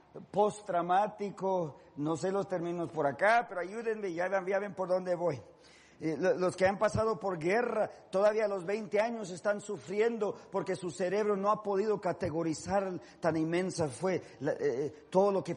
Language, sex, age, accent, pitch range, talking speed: Spanish, male, 50-69, Mexican, 170-215 Hz, 165 wpm